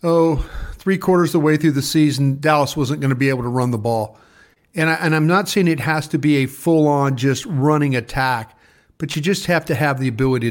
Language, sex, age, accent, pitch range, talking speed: English, male, 40-59, American, 130-155 Hz, 230 wpm